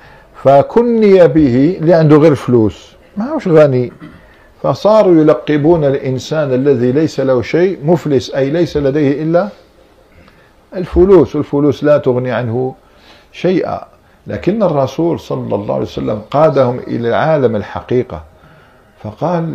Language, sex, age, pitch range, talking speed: Arabic, male, 50-69, 120-165 Hz, 115 wpm